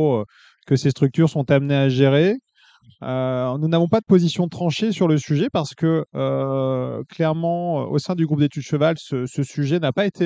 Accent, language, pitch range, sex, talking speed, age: French, French, 135-170 Hz, male, 195 wpm, 30-49